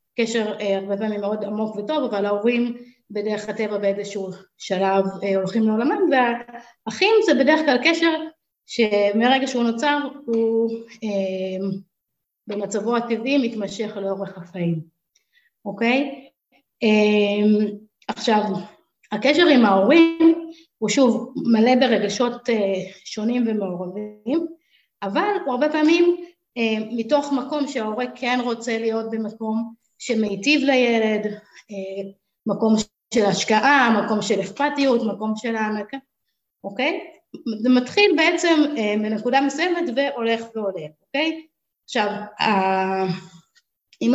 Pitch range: 210-280 Hz